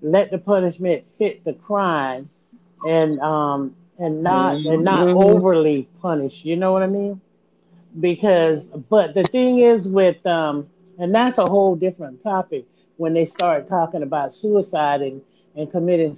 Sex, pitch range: male, 155-190 Hz